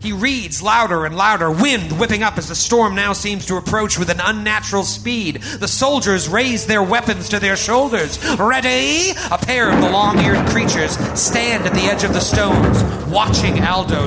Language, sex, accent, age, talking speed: English, male, American, 30-49, 185 wpm